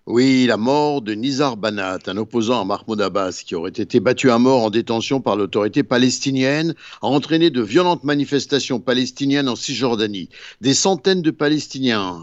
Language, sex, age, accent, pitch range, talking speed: Italian, male, 60-79, French, 115-150 Hz, 165 wpm